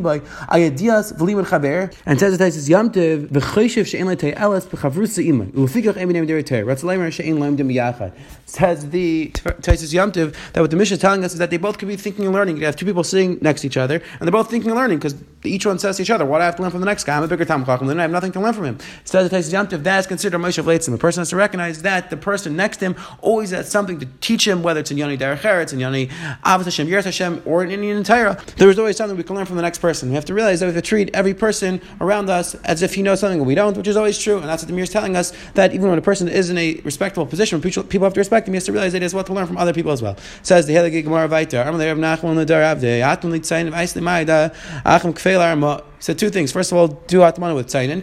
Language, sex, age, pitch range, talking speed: English, male, 30-49, 155-195 Hz, 240 wpm